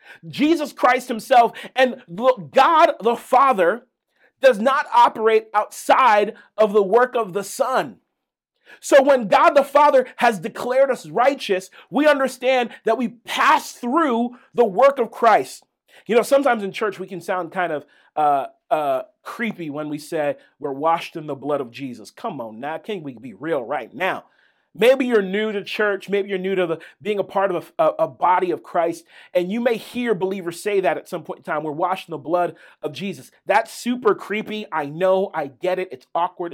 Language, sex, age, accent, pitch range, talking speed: English, male, 40-59, American, 180-250 Hz, 190 wpm